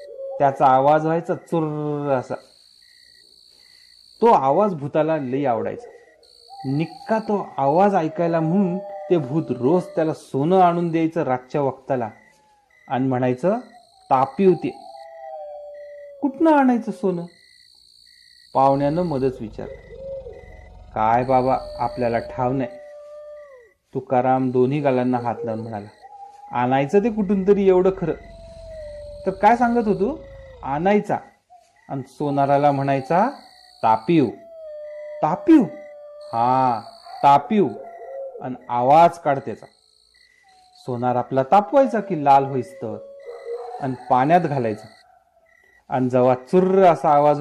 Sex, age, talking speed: male, 40-59, 105 wpm